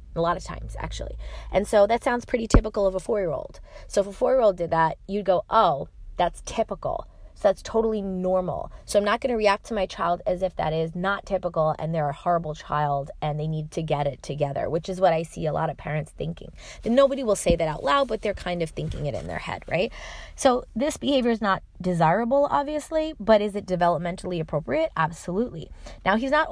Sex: female